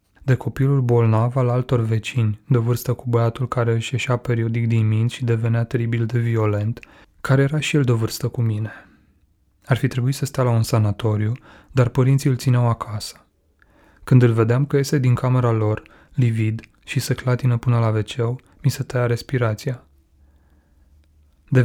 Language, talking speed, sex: Romanian, 170 wpm, male